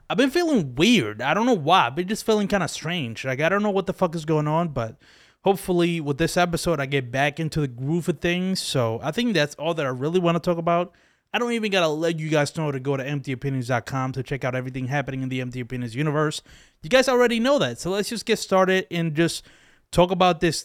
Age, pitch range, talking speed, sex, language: 20-39, 135-190 Hz, 255 wpm, male, English